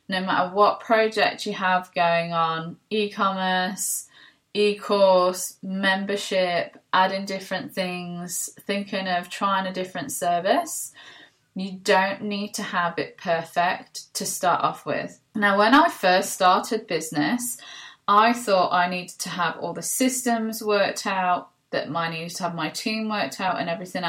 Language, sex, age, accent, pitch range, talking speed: English, female, 20-39, British, 175-205 Hz, 145 wpm